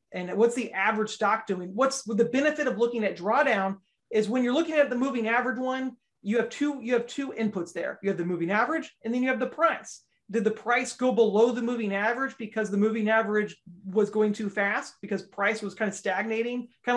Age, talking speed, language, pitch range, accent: 30-49, 225 wpm, English, 195-235 Hz, American